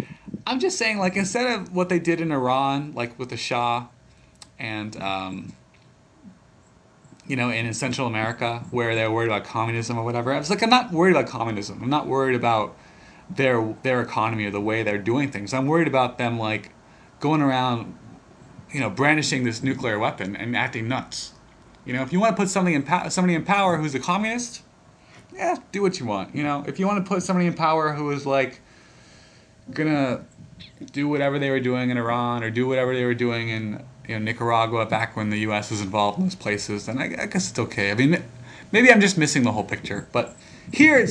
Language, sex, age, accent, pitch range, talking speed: English, male, 30-49, American, 115-180 Hz, 215 wpm